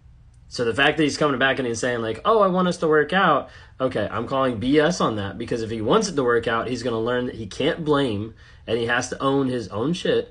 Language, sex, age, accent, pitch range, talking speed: English, male, 20-39, American, 105-125 Hz, 280 wpm